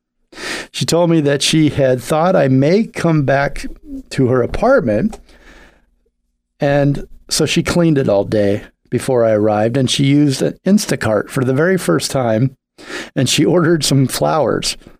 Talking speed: 155 wpm